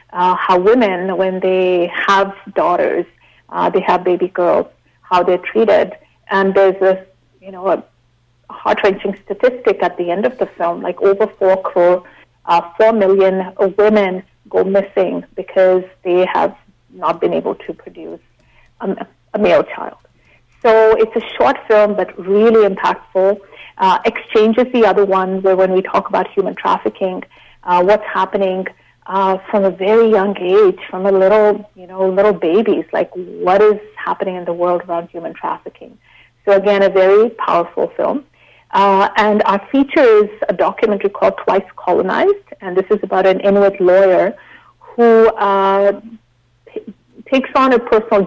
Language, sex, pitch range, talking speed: English, female, 185-215 Hz, 155 wpm